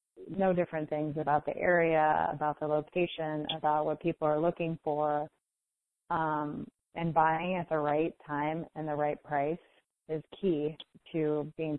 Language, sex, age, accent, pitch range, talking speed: English, female, 30-49, American, 150-170 Hz, 155 wpm